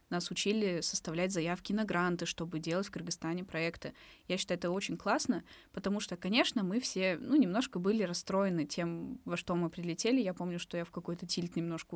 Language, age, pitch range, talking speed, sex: Russian, 20-39, 170-205 Hz, 190 wpm, female